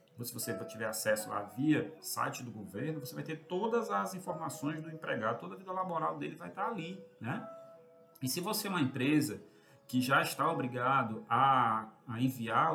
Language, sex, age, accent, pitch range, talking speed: Portuguese, male, 40-59, Brazilian, 120-160 Hz, 185 wpm